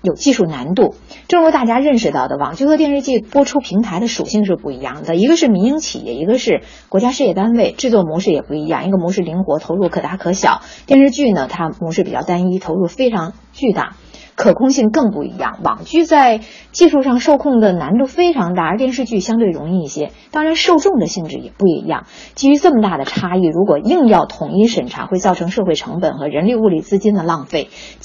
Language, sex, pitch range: Chinese, female, 175-265 Hz